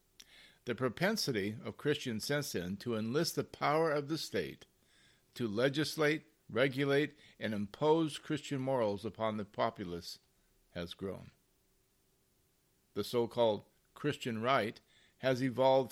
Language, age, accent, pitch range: English, 50-69, American, 110-150 Hz